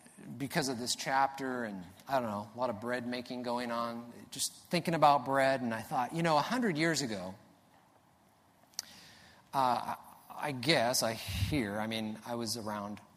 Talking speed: 175 wpm